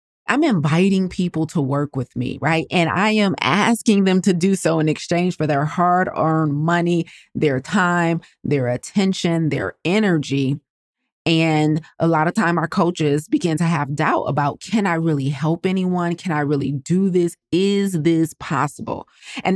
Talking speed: 165 wpm